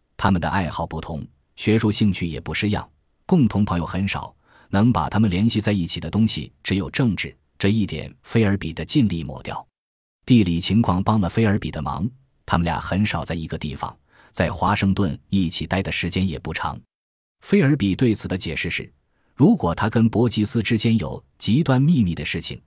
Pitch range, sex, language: 85-110 Hz, male, Chinese